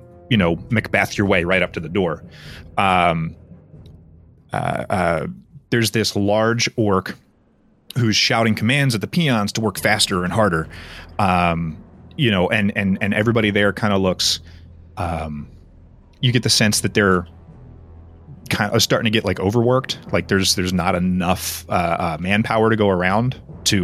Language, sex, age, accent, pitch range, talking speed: English, male, 30-49, American, 90-110 Hz, 165 wpm